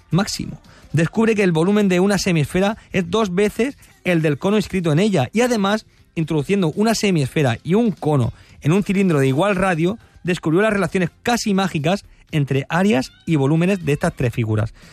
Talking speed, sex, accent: 175 wpm, male, Spanish